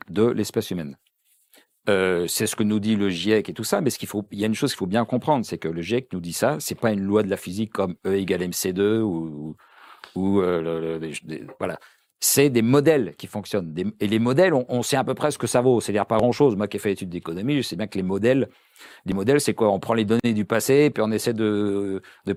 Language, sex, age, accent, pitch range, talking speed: French, male, 50-69, French, 100-120 Hz, 280 wpm